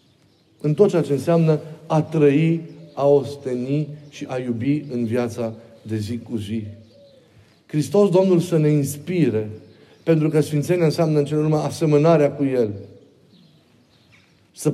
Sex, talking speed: male, 135 wpm